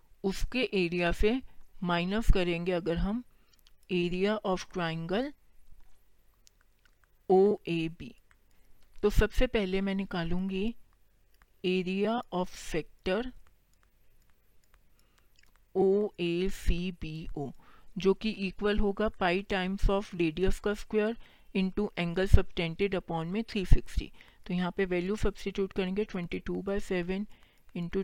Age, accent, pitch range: 50-69, native, 175-205 Hz